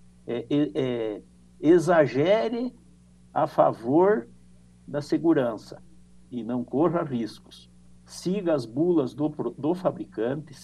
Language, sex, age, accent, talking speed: Portuguese, male, 60-79, Brazilian, 100 wpm